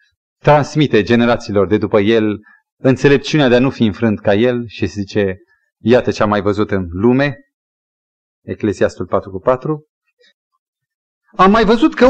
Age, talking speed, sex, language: 30-49, 145 wpm, male, Romanian